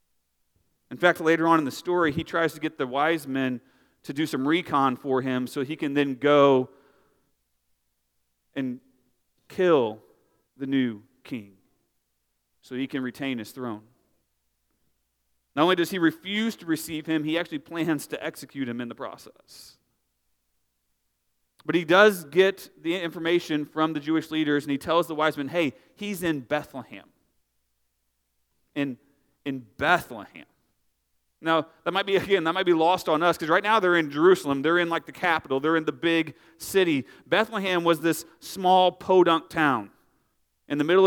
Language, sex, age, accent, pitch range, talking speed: English, male, 40-59, American, 130-180 Hz, 165 wpm